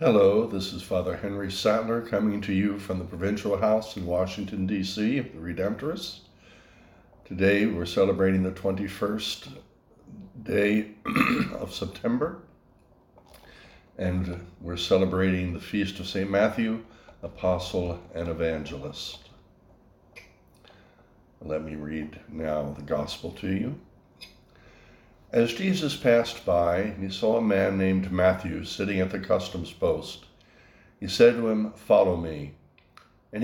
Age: 60-79